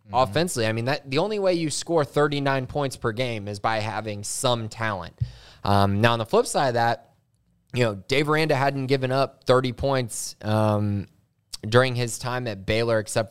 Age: 20-39